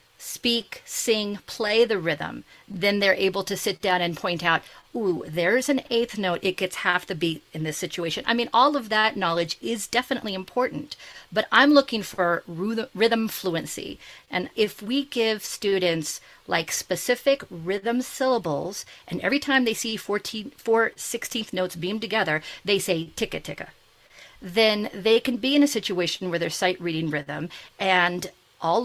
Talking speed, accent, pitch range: 165 wpm, American, 170-225 Hz